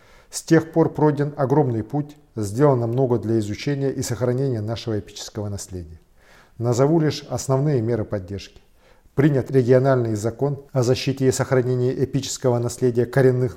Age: 50-69